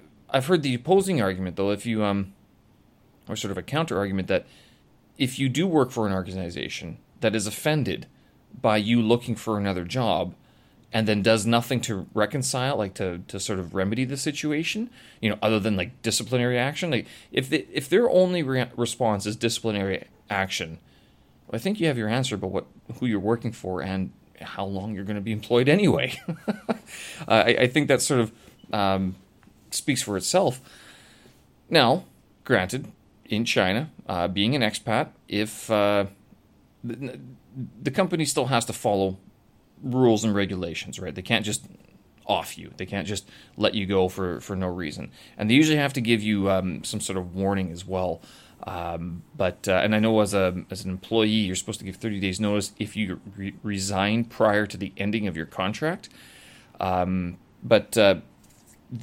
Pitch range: 95-120 Hz